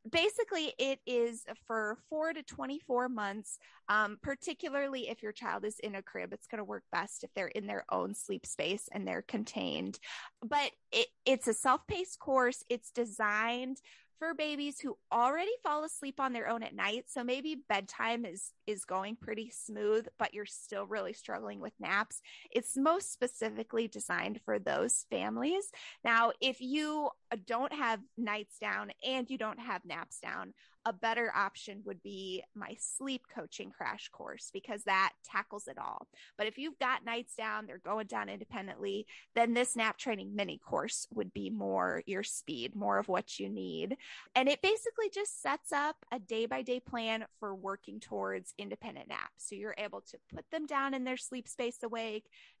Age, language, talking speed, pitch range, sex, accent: 20-39, English, 175 wpm, 215-275 Hz, female, American